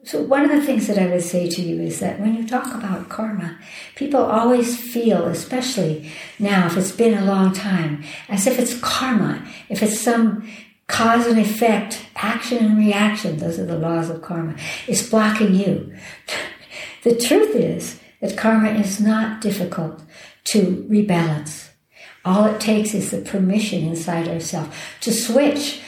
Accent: American